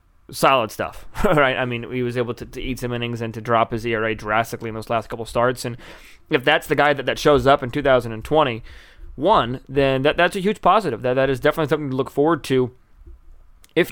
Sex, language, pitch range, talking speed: male, English, 120-140 Hz, 225 wpm